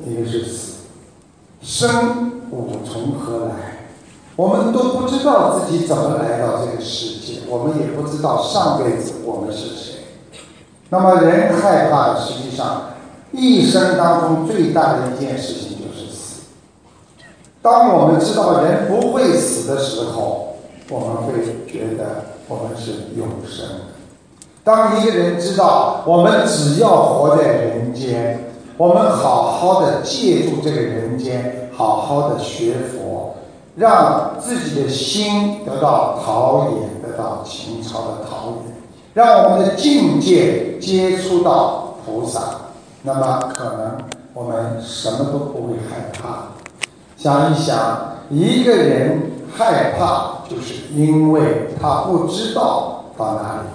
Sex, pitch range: male, 120-195 Hz